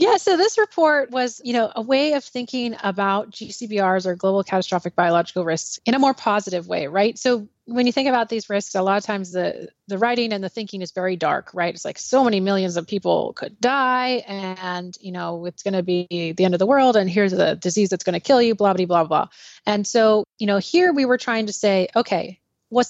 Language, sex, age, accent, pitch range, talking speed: English, female, 30-49, American, 185-235 Hz, 240 wpm